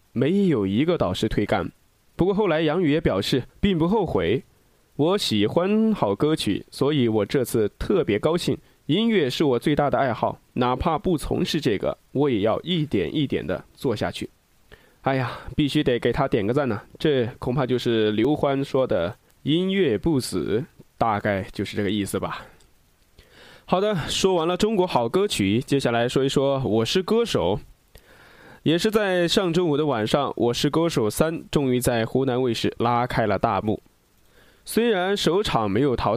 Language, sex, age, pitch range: Chinese, male, 20-39, 115-170 Hz